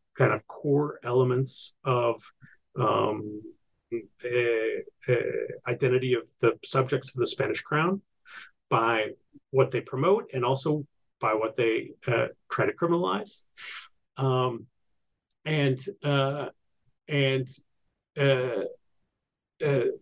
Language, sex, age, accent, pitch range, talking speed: English, male, 40-59, American, 130-155 Hz, 105 wpm